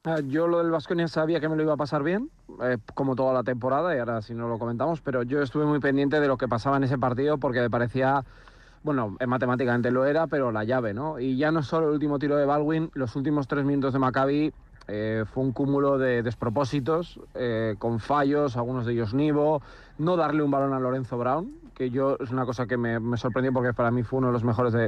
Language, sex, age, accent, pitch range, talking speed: Spanish, male, 30-49, Spanish, 125-150 Hz, 235 wpm